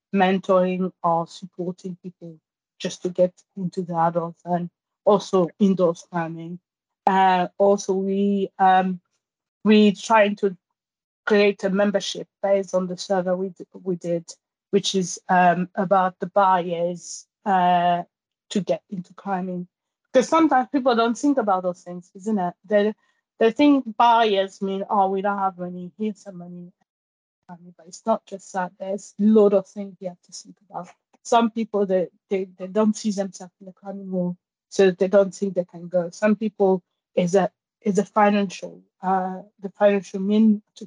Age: 30-49